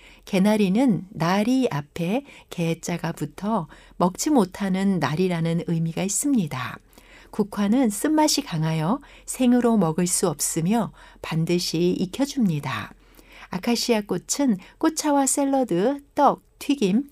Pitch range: 175-255 Hz